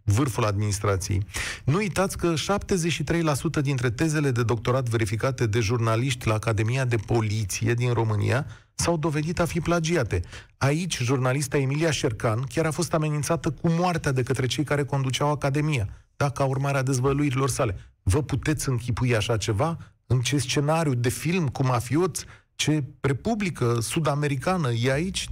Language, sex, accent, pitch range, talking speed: Romanian, male, native, 120-170 Hz, 150 wpm